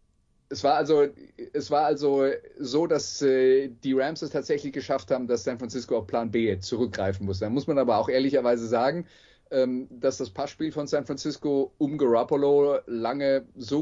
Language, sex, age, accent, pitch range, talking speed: English, male, 30-49, German, 115-150 Hz, 180 wpm